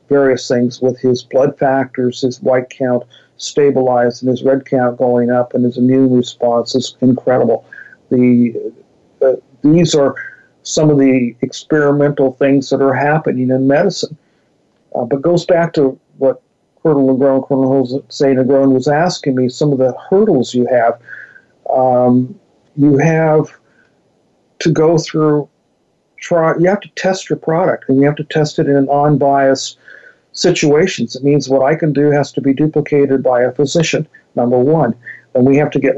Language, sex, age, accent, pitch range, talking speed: English, male, 50-69, American, 130-150 Hz, 165 wpm